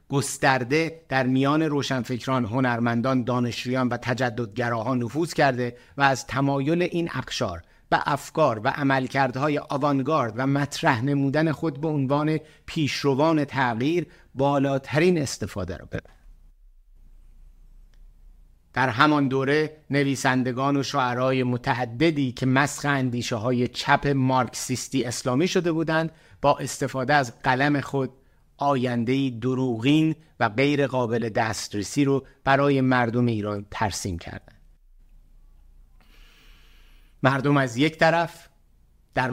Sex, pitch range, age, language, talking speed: male, 120-145 Hz, 50-69, Persian, 105 wpm